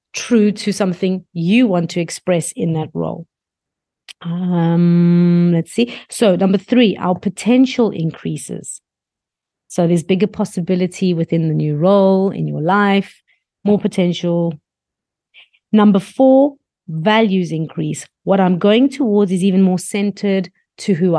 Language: English